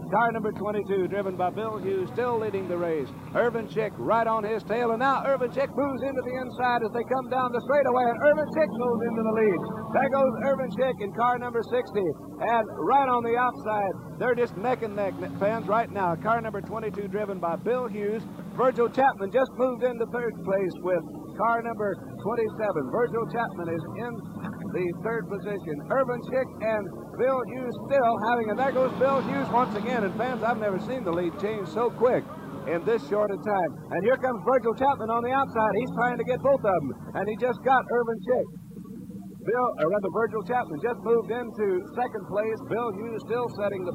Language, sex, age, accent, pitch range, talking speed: English, male, 60-79, American, 200-245 Hz, 205 wpm